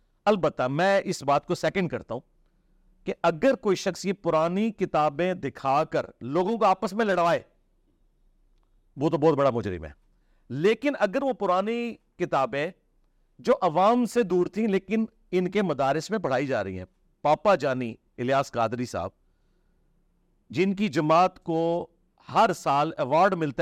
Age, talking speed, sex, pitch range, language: 50-69, 150 wpm, male, 140-185 Hz, Urdu